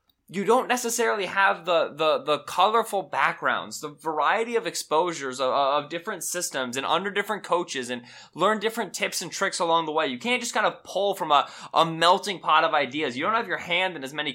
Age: 20-39